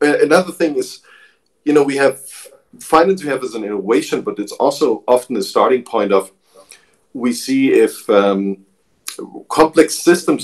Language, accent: English, German